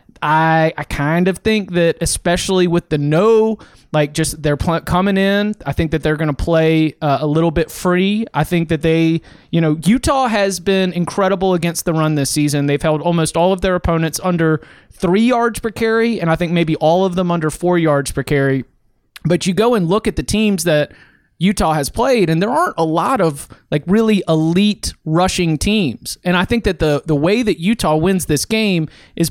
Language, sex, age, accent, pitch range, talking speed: English, male, 30-49, American, 150-190 Hz, 210 wpm